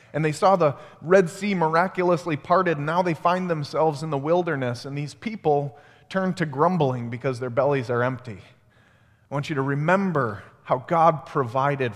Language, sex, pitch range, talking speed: English, male, 125-165 Hz, 175 wpm